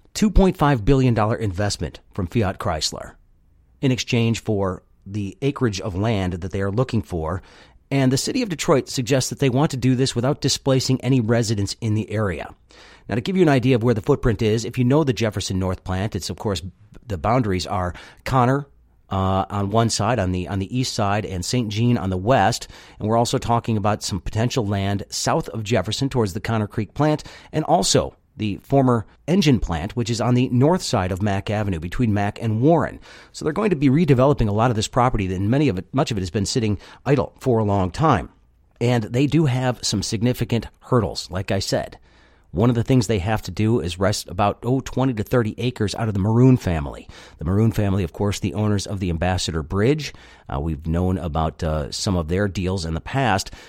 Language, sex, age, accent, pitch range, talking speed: English, male, 40-59, American, 95-125 Hz, 210 wpm